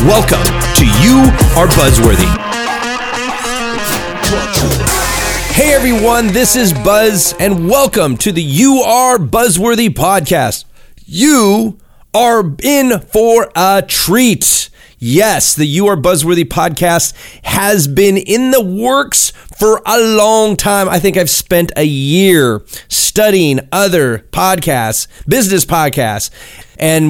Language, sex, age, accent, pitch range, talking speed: English, male, 30-49, American, 155-215 Hz, 115 wpm